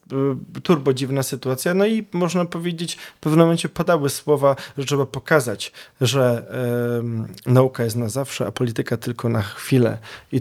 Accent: native